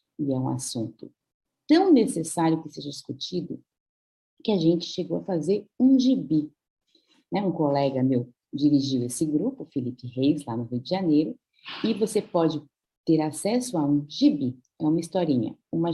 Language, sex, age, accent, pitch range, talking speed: Portuguese, female, 40-59, Brazilian, 150-200 Hz, 160 wpm